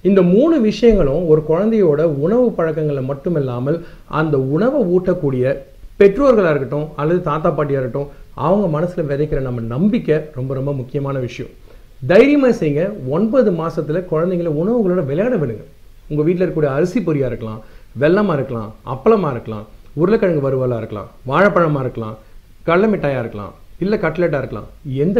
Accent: native